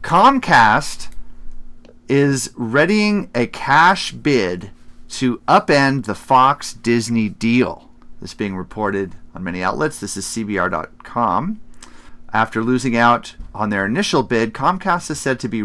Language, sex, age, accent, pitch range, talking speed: English, male, 40-59, American, 100-135 Hz, 125 wpm